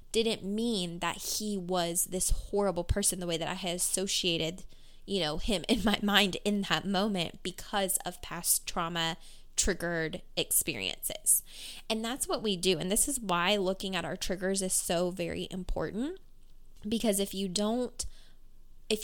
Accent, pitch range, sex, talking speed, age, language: American, 180-210 Hz, female, 160 wpm, 10-29, English